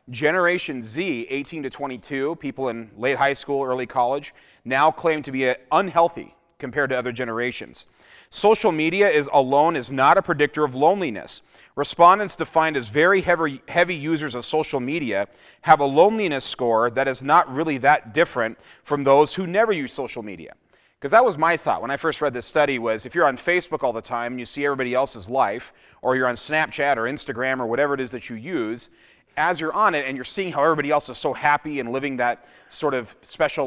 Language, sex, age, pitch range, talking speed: English, male, 30-49, 130-160 Hz, 205 wpm